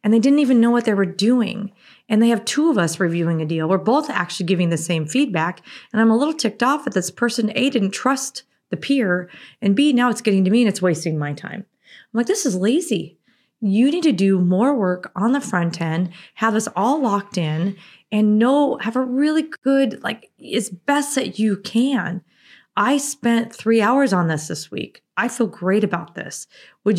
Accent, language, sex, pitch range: American, English, female, 180-230 Hz